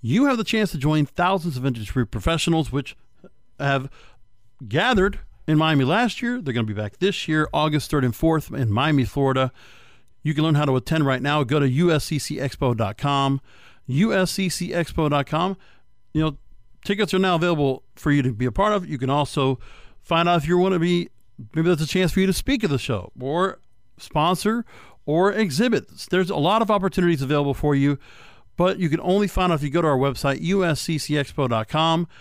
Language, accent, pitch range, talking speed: English, American, 135-175 Hz, 190 wpm